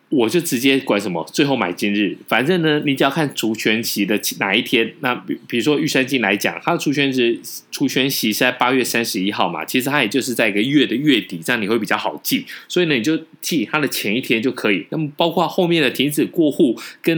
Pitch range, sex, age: 110-155 Hz, male, 20-39